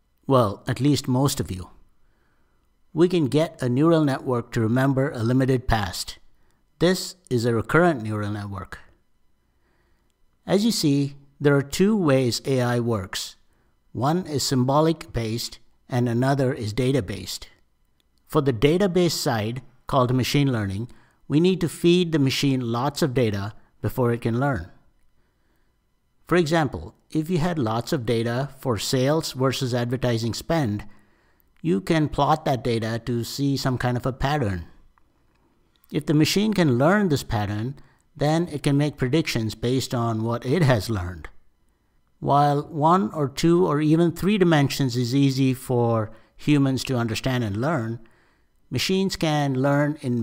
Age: 60-79